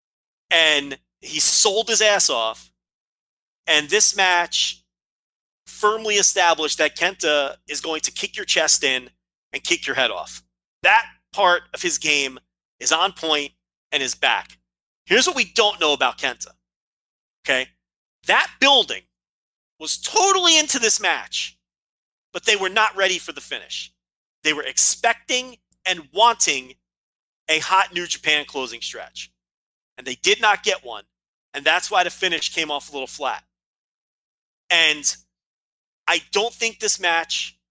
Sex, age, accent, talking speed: male, 30-49, American, 145 wpm